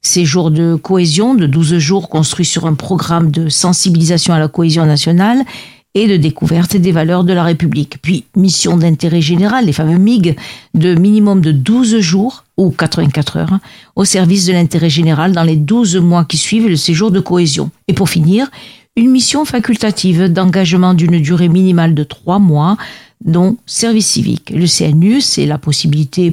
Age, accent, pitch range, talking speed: 50-69, French, 165-200 Hz, 170 wpm